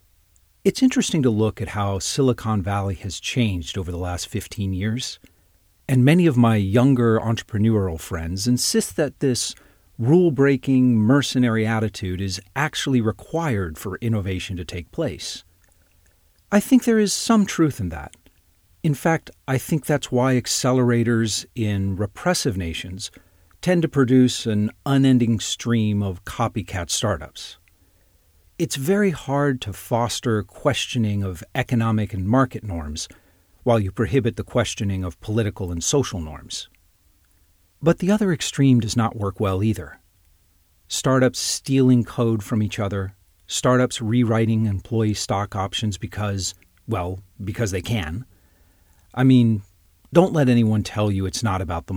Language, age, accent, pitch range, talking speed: English, 40-59, American, 90-125 Hz, 140 wpm